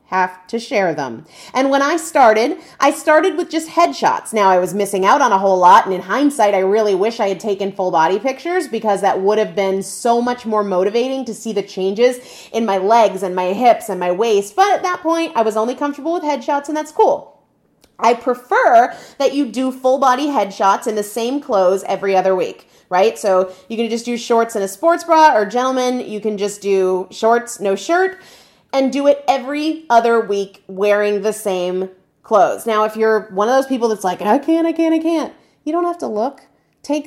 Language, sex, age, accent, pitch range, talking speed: English, female, 30-49, American, 200-265 Hz, 220 wpm